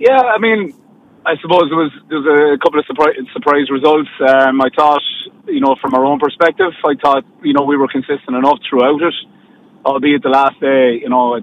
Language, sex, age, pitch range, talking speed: English, male, 30-49, 130-180 Hz, 205 wpm